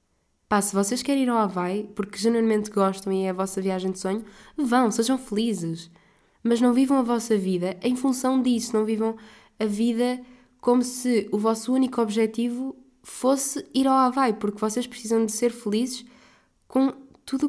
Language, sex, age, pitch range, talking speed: Portuguese, female, 20-39, 200-235 Hz, 175 wpm